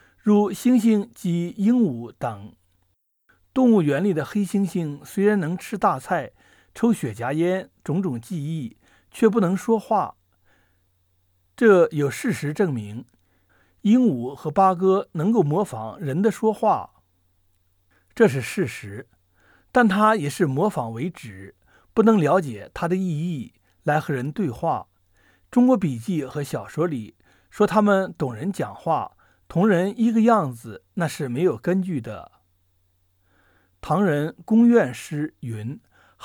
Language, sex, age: Chinese, male, 60-79